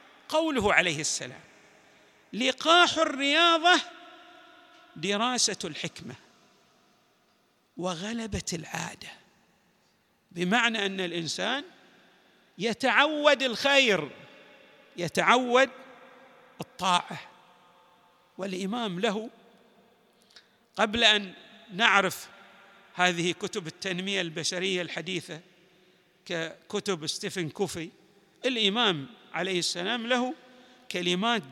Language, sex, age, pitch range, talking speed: Arabic, male, 50-69, 180-265 Hz, 65 wpm